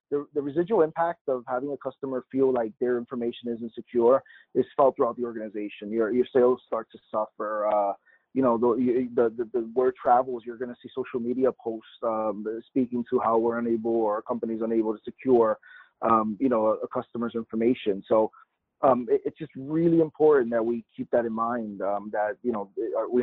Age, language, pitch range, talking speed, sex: 30-49, English, 115-130 Hz, 200 wpm, male